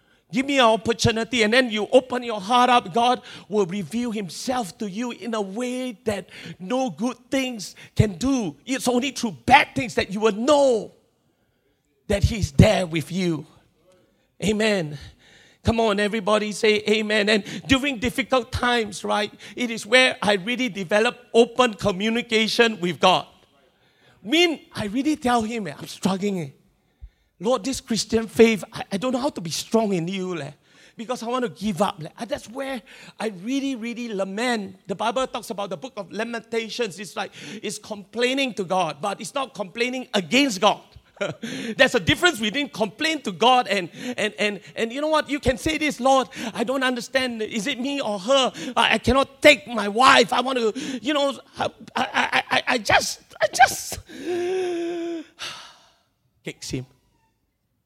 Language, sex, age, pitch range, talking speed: English, male, 40-59, 205-255 Hz, 170 wpm